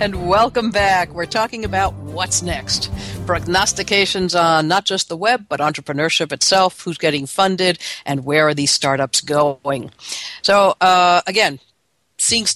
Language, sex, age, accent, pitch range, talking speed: English, female, 60-79, American, 155-215 Hz, 145 wpm